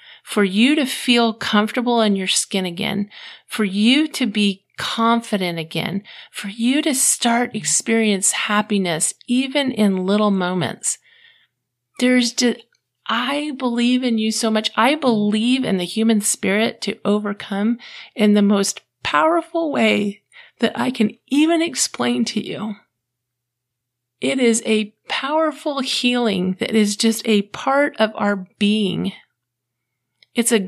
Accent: American